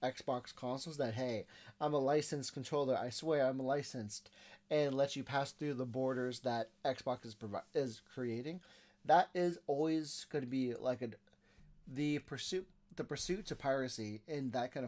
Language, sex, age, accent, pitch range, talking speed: English, male, 30-49, American, 115-150 Hz, 170 wpm